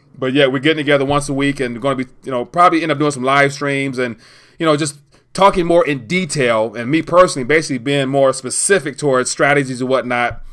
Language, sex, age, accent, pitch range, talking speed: English, male, 30-49, American, 125-145 Hz, 230 wpm